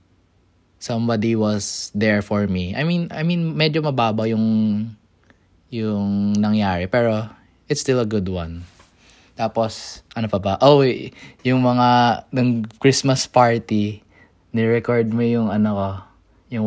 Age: 20-39